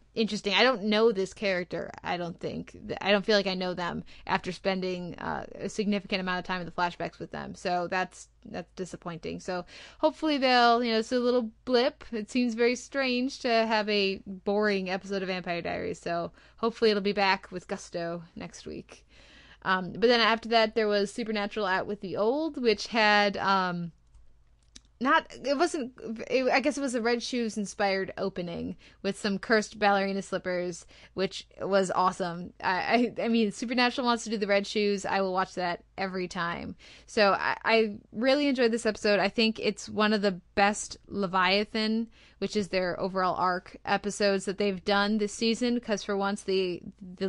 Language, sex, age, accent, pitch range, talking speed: English, female, 20-39, American, 190-230 Hz, 185 wpm